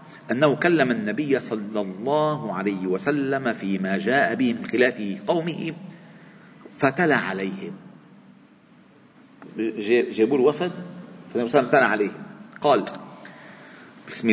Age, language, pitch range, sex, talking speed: 40-59, Arabic, 110-150 Hz, male, 90 wpm